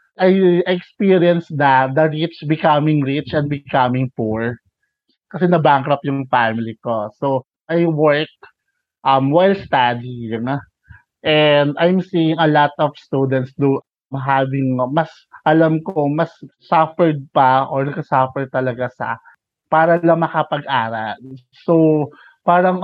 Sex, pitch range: male, 130-170 Hz